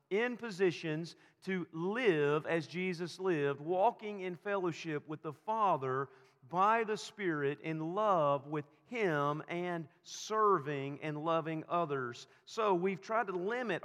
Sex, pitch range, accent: male, 145-190 Hz, American